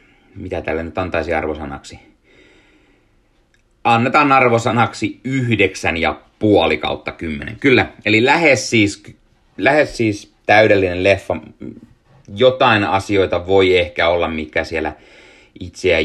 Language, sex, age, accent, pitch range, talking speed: Finnish, male, 30-49, native, 80-105 Hz, 105 wpm